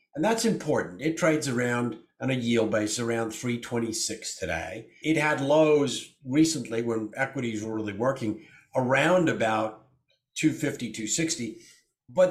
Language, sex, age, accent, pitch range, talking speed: English, male, 50-69, American, 115-150 Hz, 130 wpm